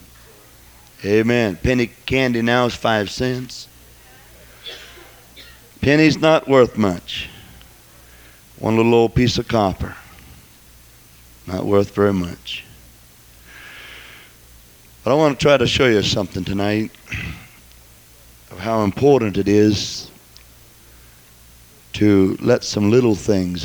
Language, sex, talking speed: English, male, 105 wpm